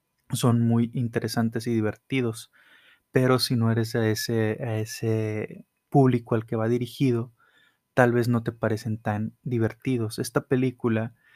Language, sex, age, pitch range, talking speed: Spanish, male, 20-39, 110-120 Hz, 145 wpm